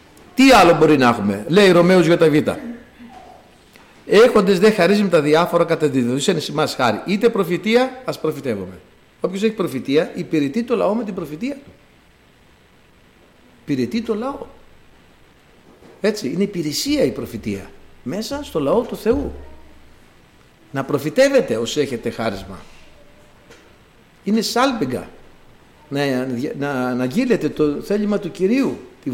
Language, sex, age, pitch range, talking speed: Greek, male, 60-79, 140-235 Hz, 125 wpm